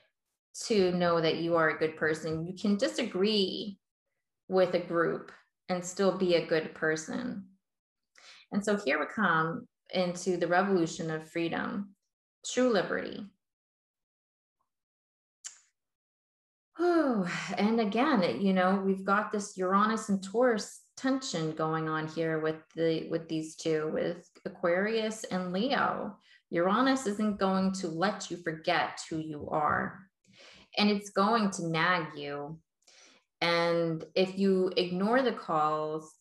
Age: 20-39